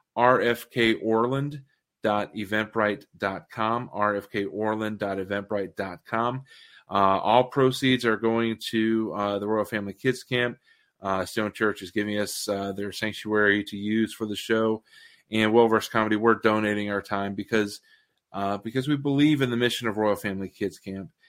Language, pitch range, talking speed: English, 105-120 Hz, 135 wpm